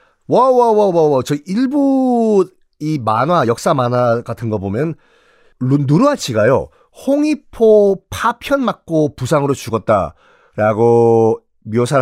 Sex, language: male, Korean